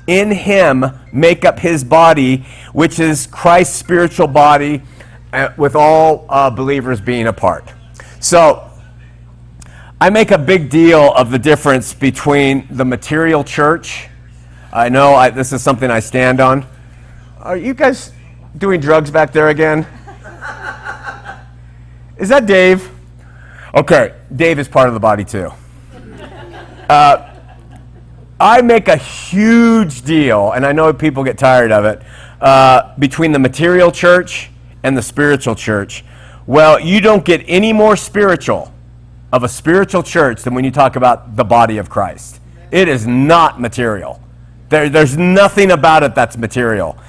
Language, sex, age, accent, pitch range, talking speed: English, male, 40-59, American, 115-165 Hz, 145 wpm